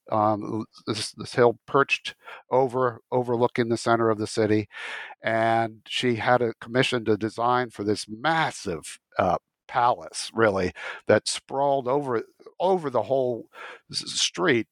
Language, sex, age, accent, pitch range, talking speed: English, male, 60-79, American, 110-135 Hz, 130 wpm